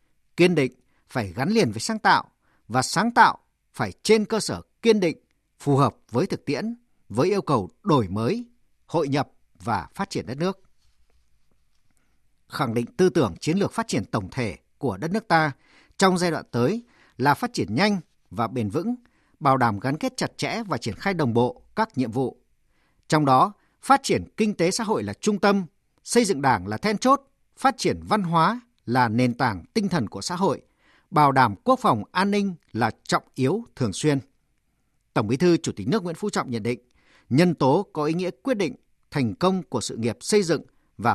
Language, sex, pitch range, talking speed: Vietnamese, male, 130-205 Hz, 205 wpm